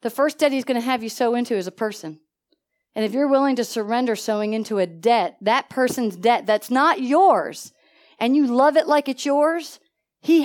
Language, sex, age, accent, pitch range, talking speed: English, female, 40-59, American, 255-375 Hz, 210 wpm